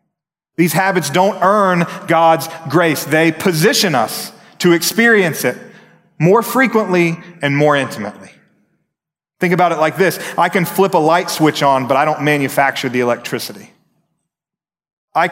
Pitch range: 140-185 Hz